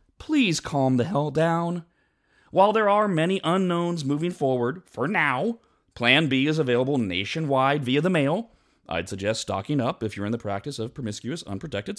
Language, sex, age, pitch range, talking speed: English, male, 30-49, 120-190 Hz, 170 wpm